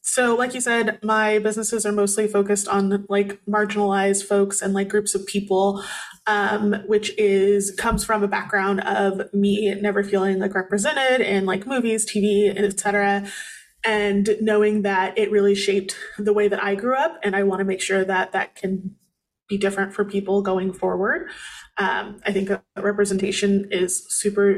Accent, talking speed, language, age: American, 175 wpm, English, 20-39